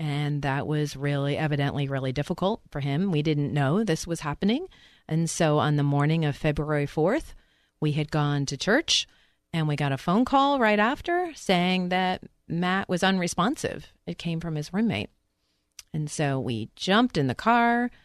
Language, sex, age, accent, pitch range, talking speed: English, female, 30-49, American, 140-190 Hz, 175 wpm